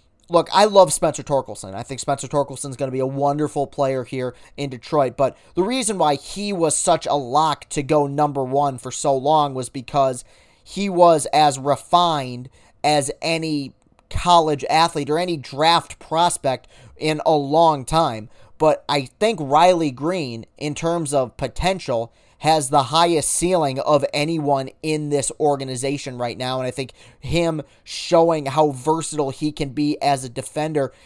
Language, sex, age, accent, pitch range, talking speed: English, male, 30-49, American, 130-160 Hz, 165 wpm